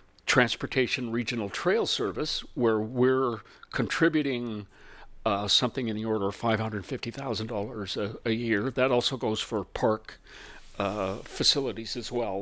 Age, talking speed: 60-79, 145 wpm